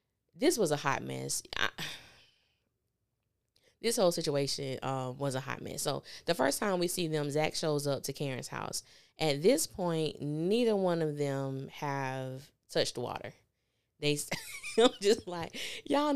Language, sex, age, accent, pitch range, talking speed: English, female, 20-39, American, 140-200 Hz, 160 wpm